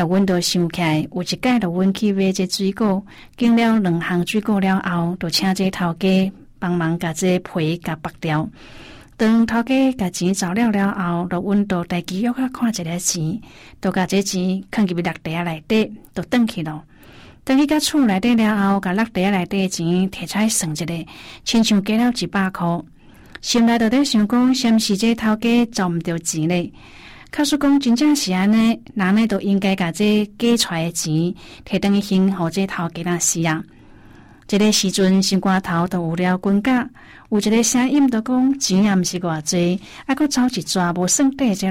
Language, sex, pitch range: Chinese, female, 175-220 Hz